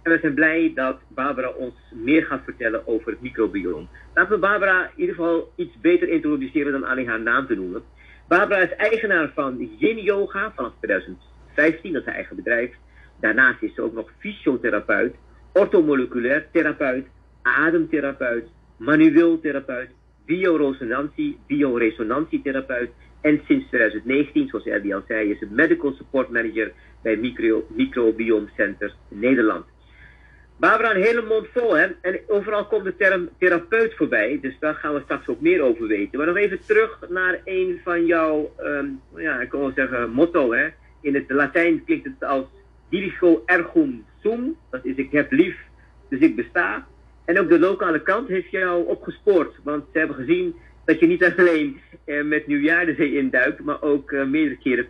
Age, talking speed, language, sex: 50-69, 165 wpm, Dutch, male